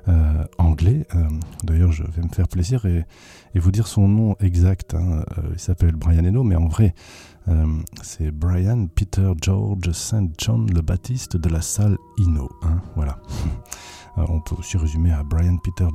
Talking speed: 180 wpm